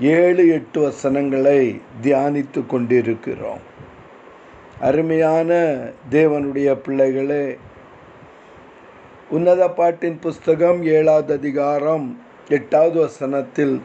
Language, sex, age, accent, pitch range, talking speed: Tamil, male, 50-69, native, 150-195 Hz, 60 wpm